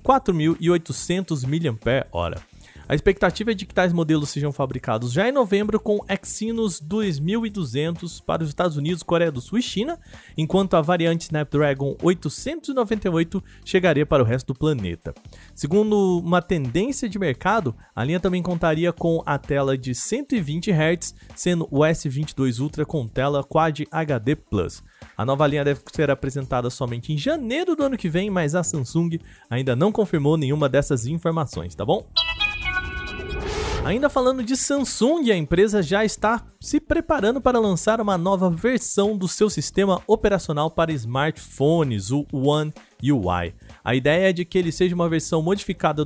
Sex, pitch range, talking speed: male, 145-200 Hz, 155 wpm